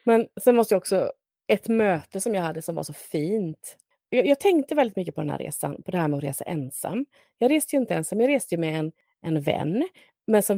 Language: Swedish